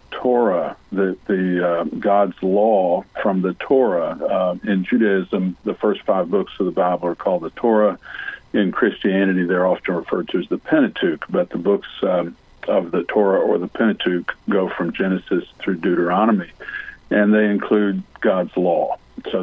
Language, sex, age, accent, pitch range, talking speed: English, male, 50-69, American, 95-115 Hz, 165 wpm